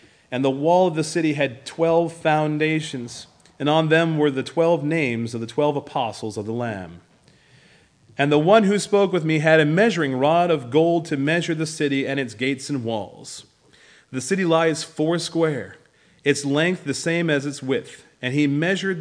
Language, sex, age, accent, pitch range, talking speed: English, male, 40-59, American, 125-165 Hz, 190 wpm